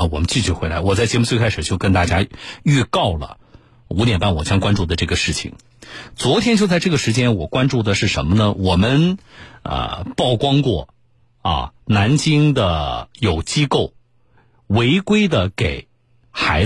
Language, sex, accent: Chinese, male, native